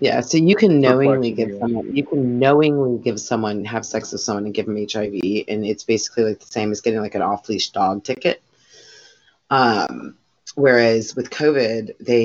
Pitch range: 110-140 Hz